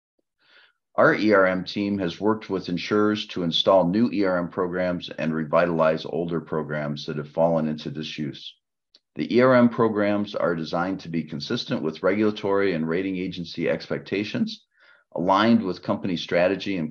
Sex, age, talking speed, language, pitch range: male, 40-59, 140 wpm, English, 80-100 Hz